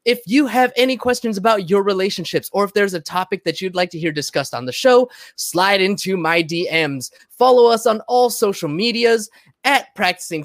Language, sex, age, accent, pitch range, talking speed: English, male, 20-39, American, 160-235 Hz, 195 wpm